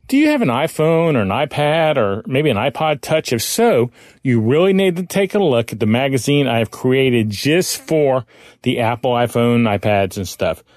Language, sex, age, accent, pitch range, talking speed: English, male, 40-59, American, 115-160 Hz, 200 wpm